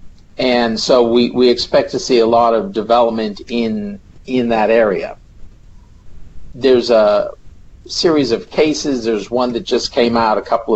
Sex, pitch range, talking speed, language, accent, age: male, 105-120 Hz, 155 wpm, English, American, 50-69